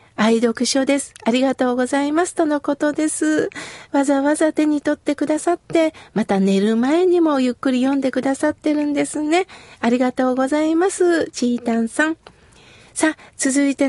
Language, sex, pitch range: Japanese, female, 255-320 Hz